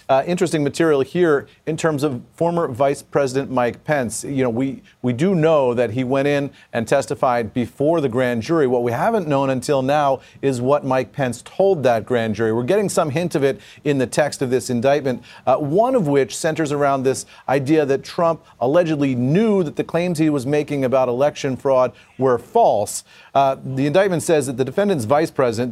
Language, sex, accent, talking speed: English, male, American, 200 wpm